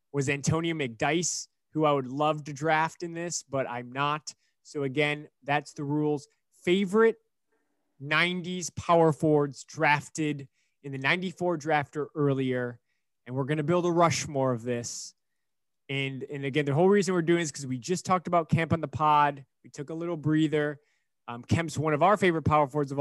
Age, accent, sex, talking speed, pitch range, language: 20-39, American, male, 185 wpm, 140-165 Hz, English